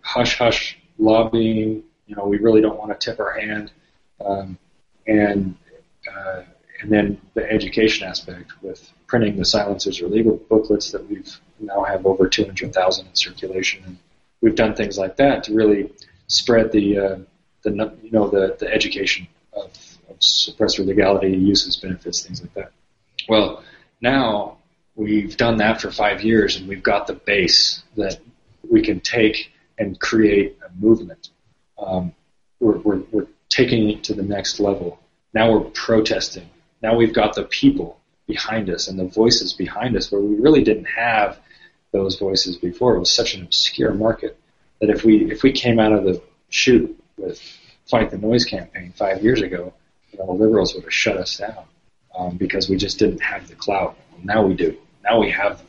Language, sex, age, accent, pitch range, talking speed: English, male, 30-49, American, 95-110 Hz, 170 wpm